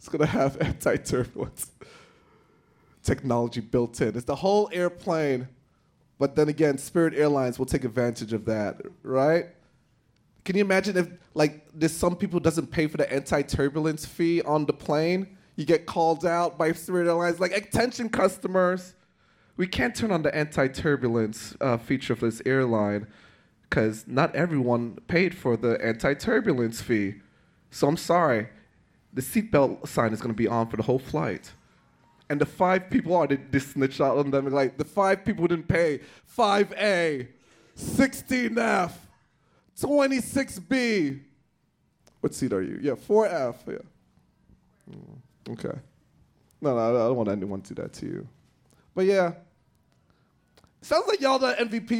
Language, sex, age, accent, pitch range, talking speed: English, male, 20-39, American, 125-185 Hz, 150 wpm